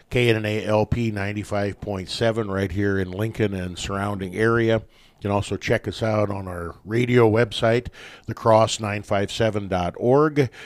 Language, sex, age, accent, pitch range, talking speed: English, male, 50-69, American, 100-120 Hz, 115 wpm